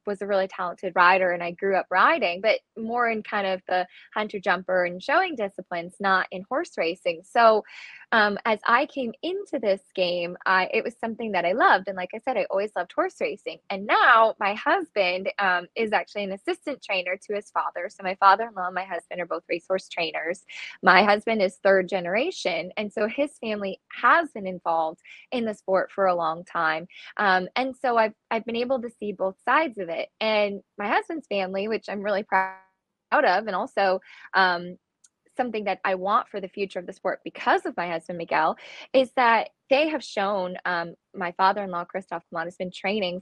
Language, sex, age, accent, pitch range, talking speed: English, female, 10-29, American, 180-225 Hz, 200 wpm